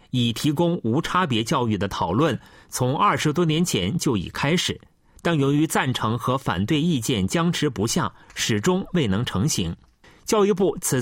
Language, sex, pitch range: Chinese, male, 115-175 Hz